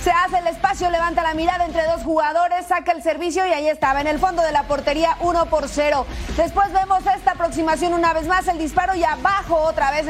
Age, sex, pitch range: 30-49, female, 285-340 Hz